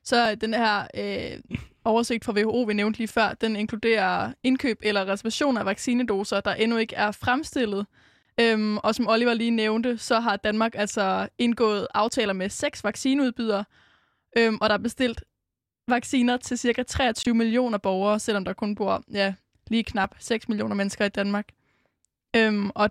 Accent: native